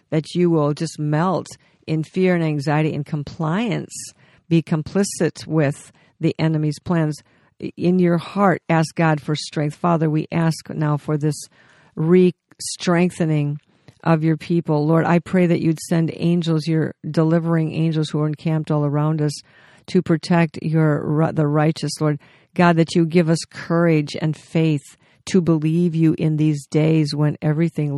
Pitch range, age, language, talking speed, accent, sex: 150-165 Hz, 50-69, English, 155 wpm, American, female